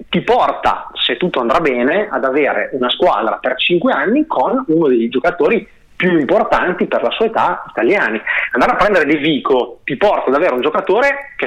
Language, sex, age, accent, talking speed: Italian, male, 30-49, native, 190 wpm